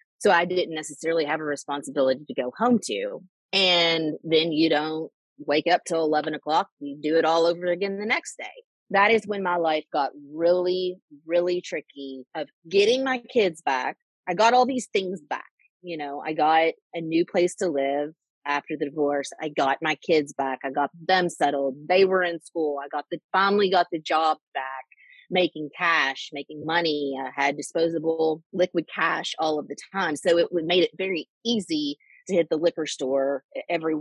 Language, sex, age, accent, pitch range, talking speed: English, female, 30-49, American, 145-180 Hz, 190 wpm